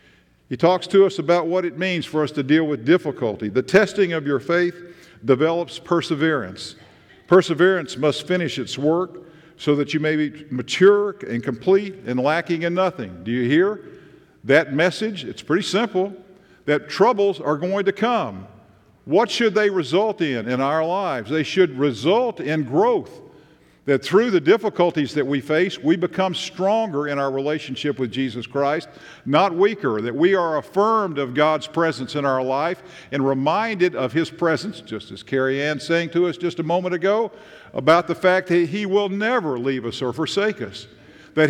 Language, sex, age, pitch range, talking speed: English, male, 50-69, 150-195 Hz, 175 wpm